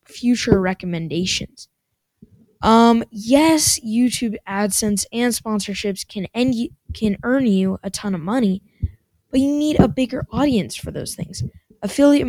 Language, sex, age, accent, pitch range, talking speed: English, female, 10-29, American, 190-240 Hz, 125 wpm